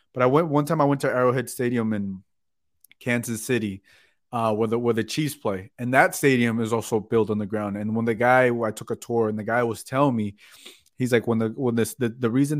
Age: 20-39